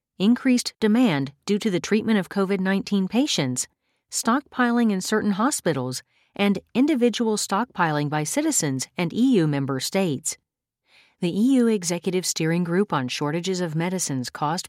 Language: English